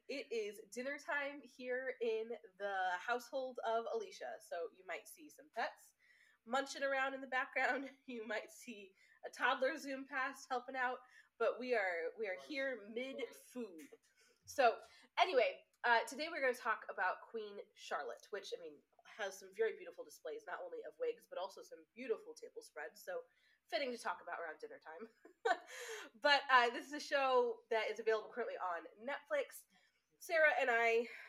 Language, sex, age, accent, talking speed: English, female, 20-39, American, 175 wpm